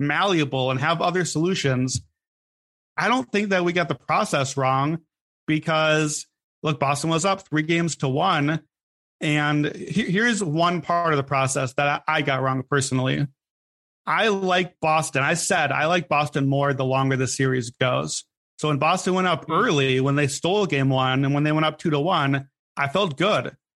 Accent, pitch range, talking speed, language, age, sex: American, 135-165 Hz, 180 wpm, English, 30-49, male